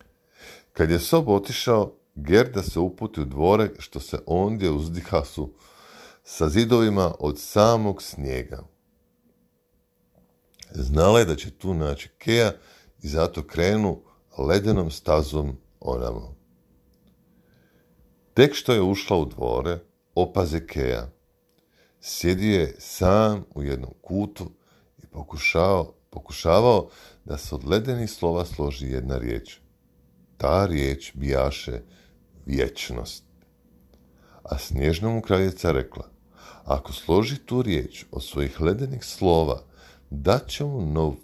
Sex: male